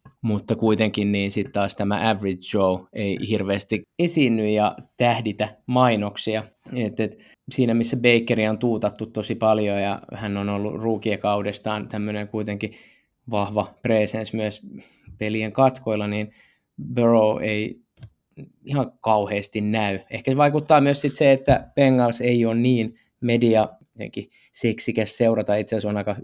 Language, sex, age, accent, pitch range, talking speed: Finnish, male, 20-39, native, 105-125 Hz, 135 wpm